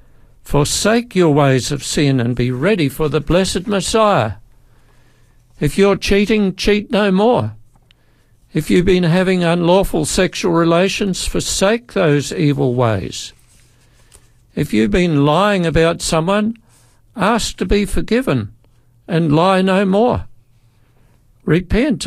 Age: 60-79